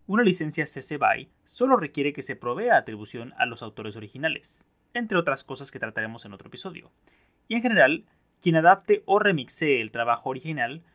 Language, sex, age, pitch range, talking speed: Spanish, male, 30-49, 120-165 Hz, 175 wpm